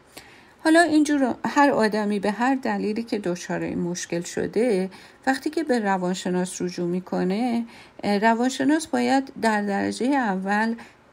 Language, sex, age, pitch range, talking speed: Persian, female, 50-69, 185-235 Hz, 125 wpm